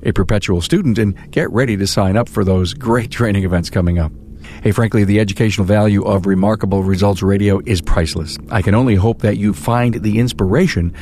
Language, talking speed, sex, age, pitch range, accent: English, 195 wpm, male, 50-69, 95-115 Hz, American